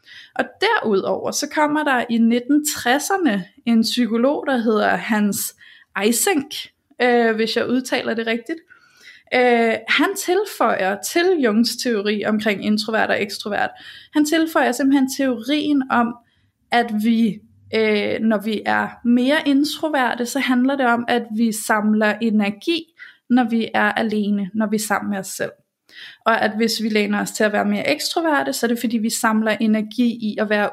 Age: 20-39